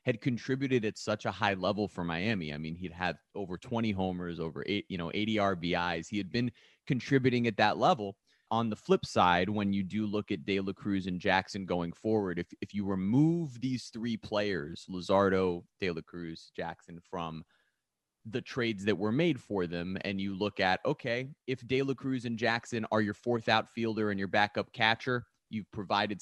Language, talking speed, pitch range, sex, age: English, 195 wpm, 100-125 Hz, male, 30-49